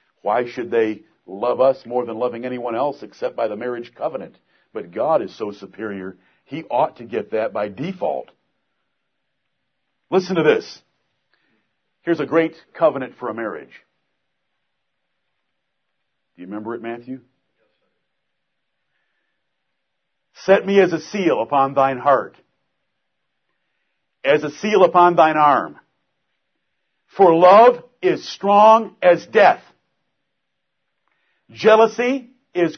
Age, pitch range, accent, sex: 50-69, 130-220 Hz, American, male